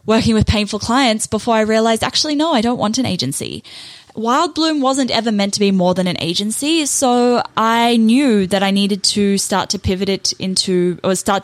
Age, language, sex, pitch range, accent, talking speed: 10-29, English, female, 195-250 Hz, Australian, 205 wpm